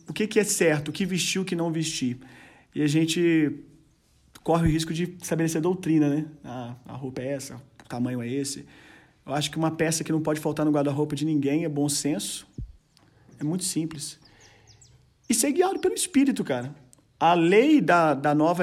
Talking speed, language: 195 wpm, Gujarati